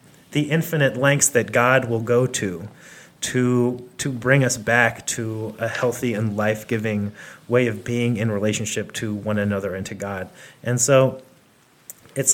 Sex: male